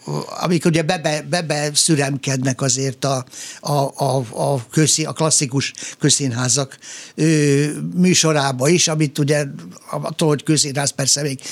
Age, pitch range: 60-79, 140-160 Hz